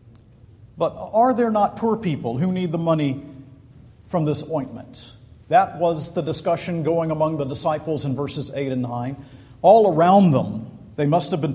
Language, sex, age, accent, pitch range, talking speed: English, male, 50-69, American, 120-180 Hz, 170 wpm